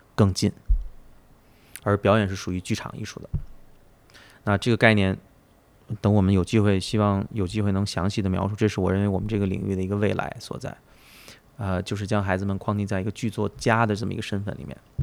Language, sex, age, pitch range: Chinese, male, 20-39, 100-135 Hz